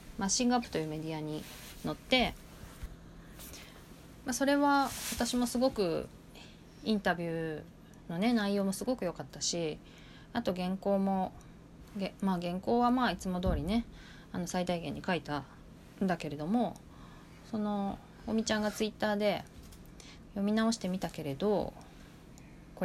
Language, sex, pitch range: Japanese, female, 160-225 Hz